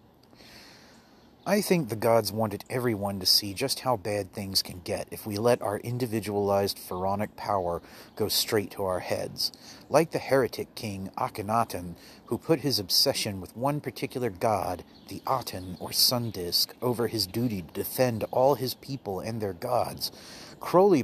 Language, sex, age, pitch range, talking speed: English, male, 30-49, 100-130 Hz, 160 wpm